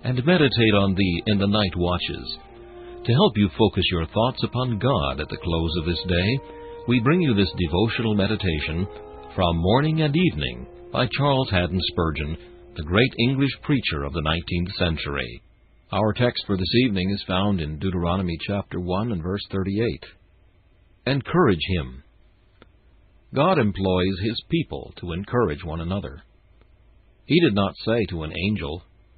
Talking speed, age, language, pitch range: 155 wpm, 60-79, English, 85-110 Hz